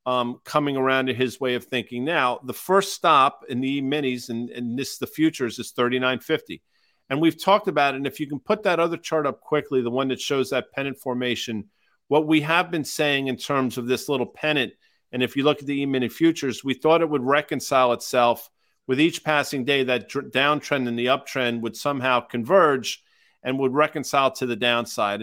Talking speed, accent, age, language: 210 wpm, American, 50-69, English